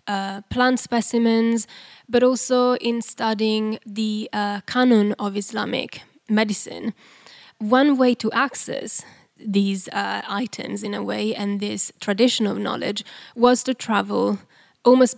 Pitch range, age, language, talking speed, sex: 215-245 Hz, 10-29, English, 125 wpm, female